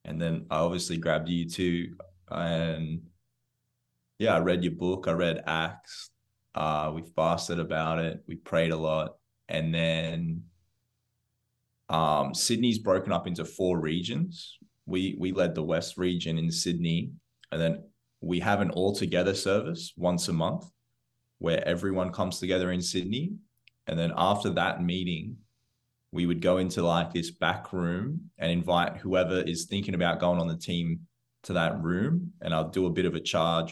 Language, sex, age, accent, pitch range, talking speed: English, male, 20-39, Australian, 80-120 Hz, 165 wpm